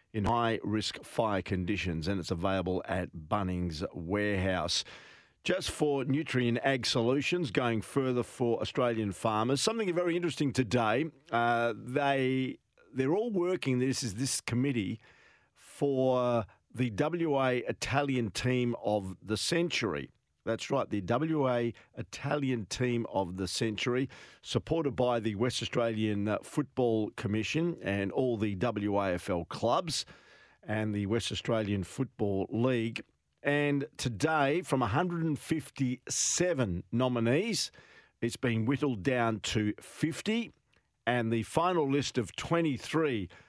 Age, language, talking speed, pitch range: 50-69, English, 115 wpm, 105-135 Hz